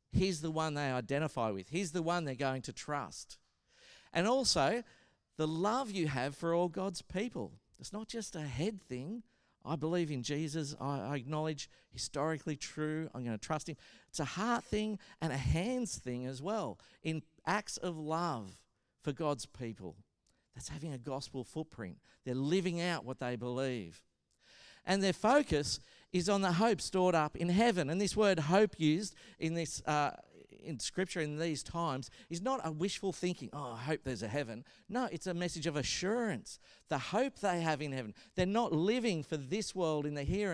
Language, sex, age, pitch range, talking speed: English, male, 50-69, 140-190 Hz, 190 wpm